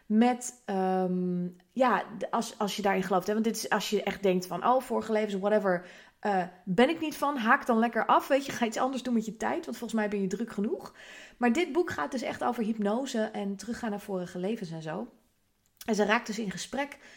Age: 30-49